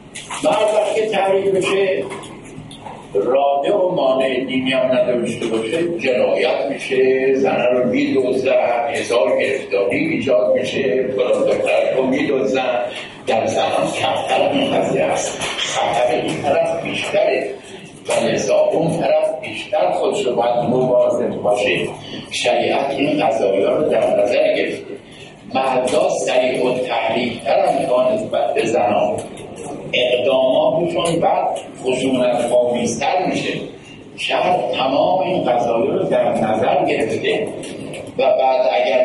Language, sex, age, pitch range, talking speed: English, male, 60-79, 130-215 Hz, 90 wpm